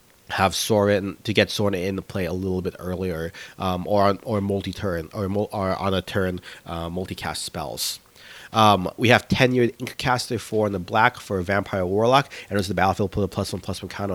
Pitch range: 95-115 Hz